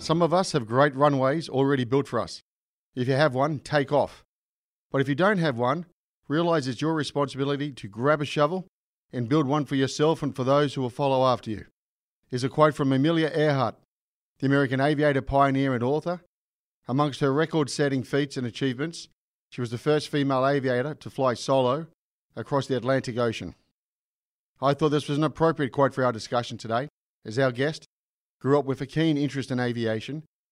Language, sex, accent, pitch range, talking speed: English, male, Australian, 130-150 Hz, 190 wpm